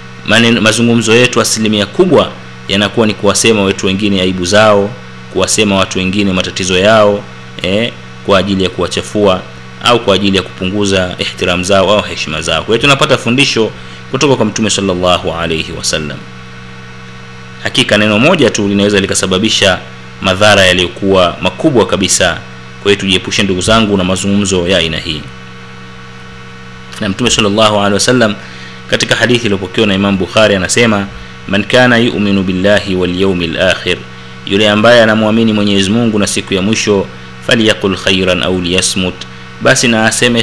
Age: 30-49